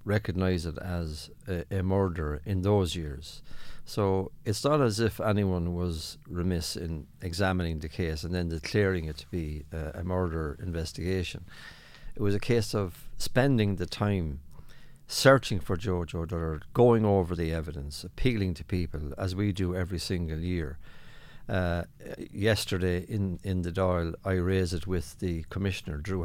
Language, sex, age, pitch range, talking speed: English, male, 60-79, 85-105 Hz, 160 wpm